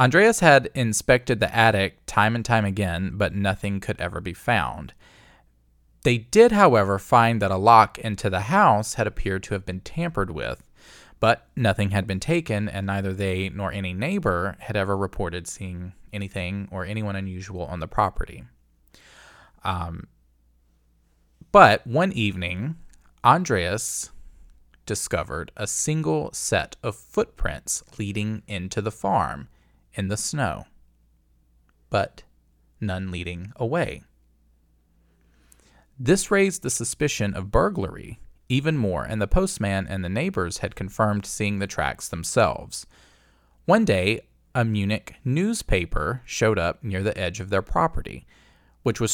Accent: American